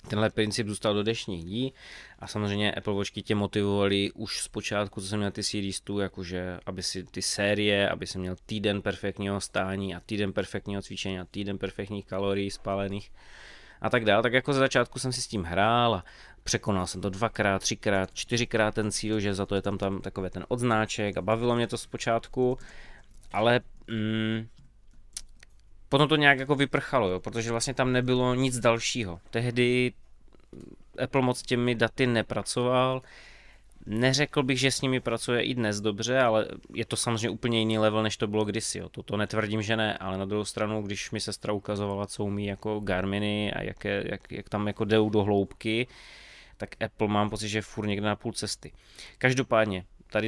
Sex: male